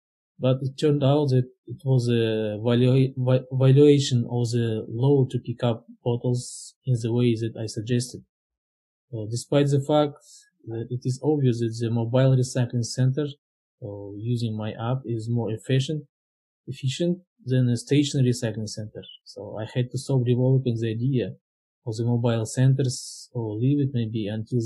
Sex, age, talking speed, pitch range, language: male, 20-39, 160 wpm, 115-130 Hz, English